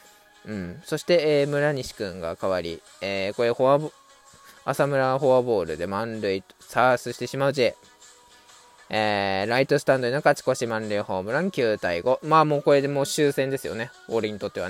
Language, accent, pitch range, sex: Japanese, native, 110-170 Hz, male